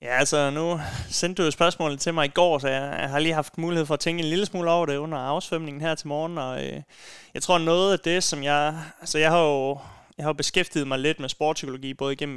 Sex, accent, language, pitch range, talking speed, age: male, native, Danish, 135-155 Hz, 265 wpm, 30-49